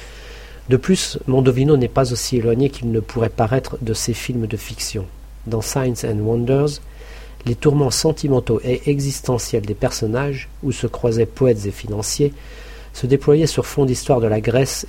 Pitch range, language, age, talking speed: 110-135 Hz, French, 50-69, 165 wpm